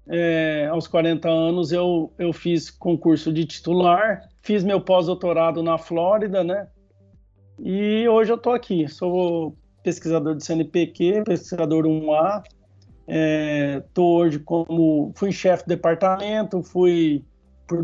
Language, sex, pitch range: Portuguese, male, 155-190 Hz